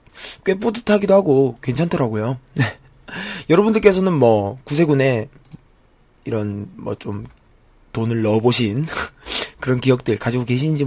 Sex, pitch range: male, 115-165 Hz